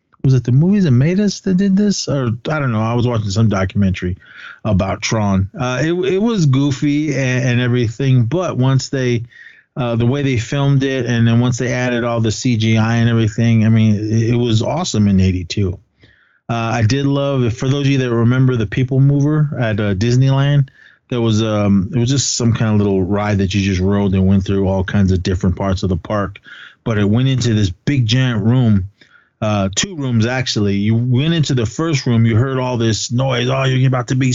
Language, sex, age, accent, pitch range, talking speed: English, male, 30-49, American, 110-135 Hz, 225 wpm